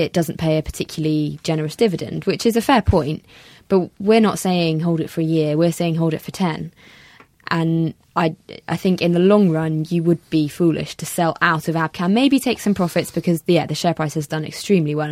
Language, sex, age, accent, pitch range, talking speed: English, female, 20-39, British, 155-180 Hz, 225 wpm